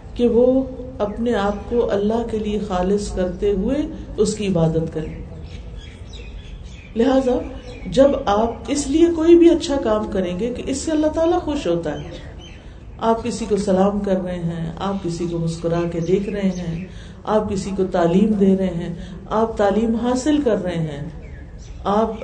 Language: Urdu